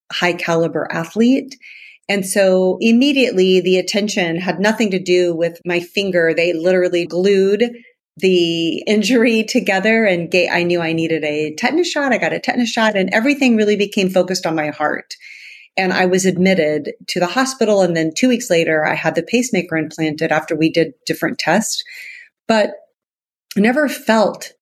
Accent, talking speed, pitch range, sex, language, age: American, 165 wpm, 175-225 Hz, female, English, 40-59